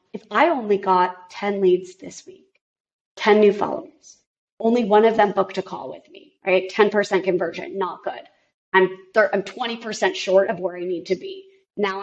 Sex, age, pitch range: female, 20-39, 195-255 Hz